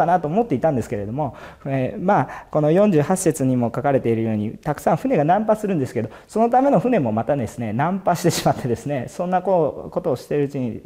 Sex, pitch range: male, 110-160 Hz